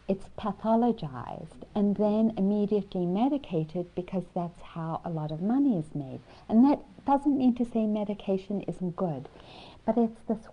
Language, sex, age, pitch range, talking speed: English, female, 50-69, 165-225 Hz, 155 wpm